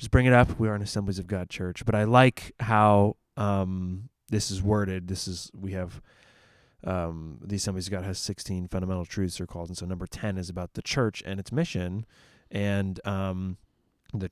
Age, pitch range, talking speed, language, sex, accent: 20-39, 95-110 Hz, 200 wpm, English, male, American